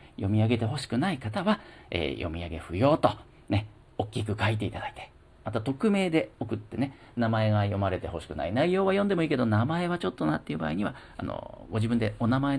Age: 50-69